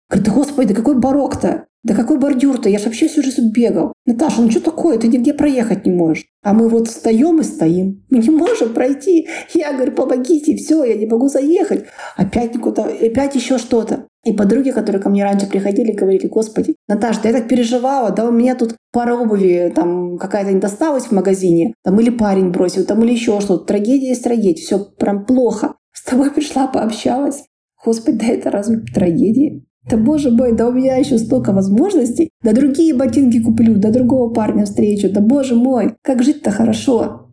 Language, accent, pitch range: Russian, native, 200-260 Hz